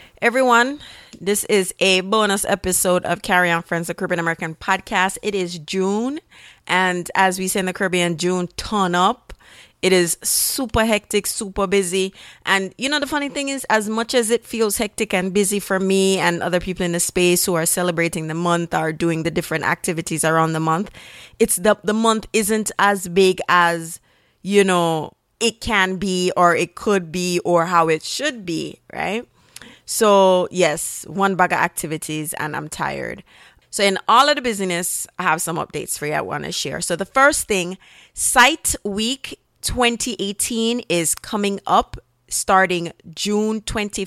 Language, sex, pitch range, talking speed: English, female, 175-210 Hz, 175 wpm